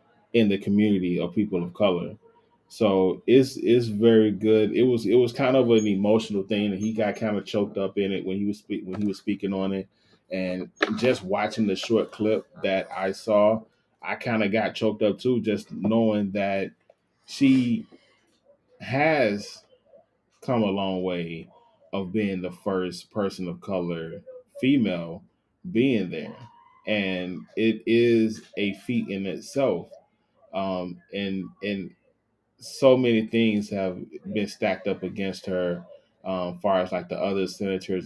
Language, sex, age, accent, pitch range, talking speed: English, male, 20-39, American, 95-110 Hz, 160 wpm